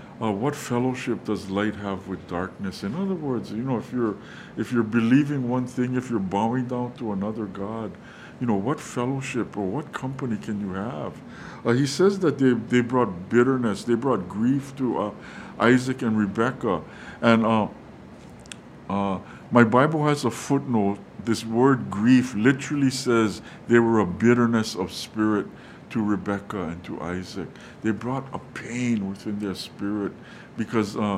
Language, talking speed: English, 165 wpm